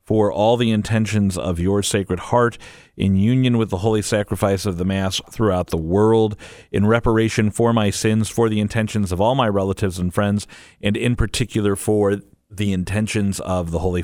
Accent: American